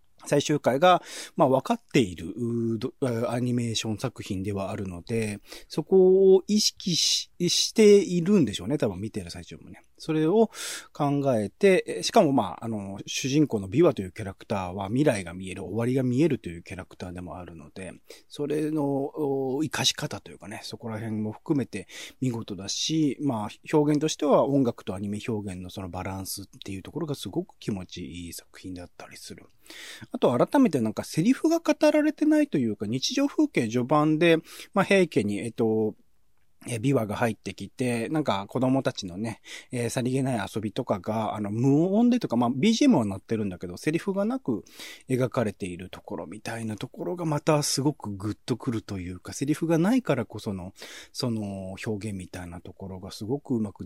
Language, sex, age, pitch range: Japanese, male, 30-49, 100-150 Hz